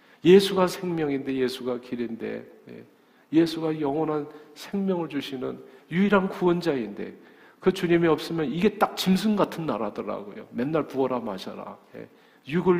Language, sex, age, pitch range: Korean, male, 50-69, 130-175 Hz